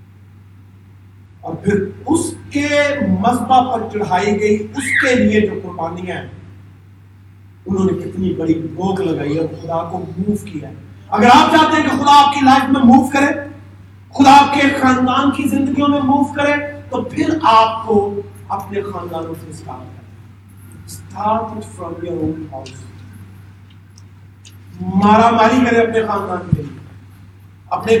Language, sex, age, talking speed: Urdu, male, 40-59, 130 wpm